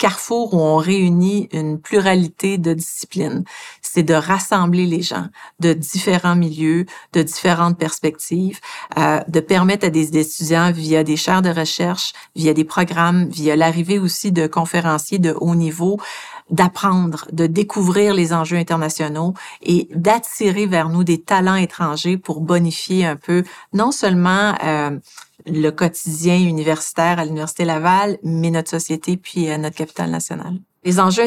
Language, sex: French, female